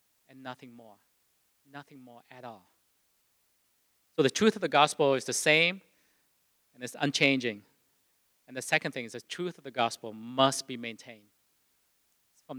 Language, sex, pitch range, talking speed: English, male, 125-160 Hz, 155 wpm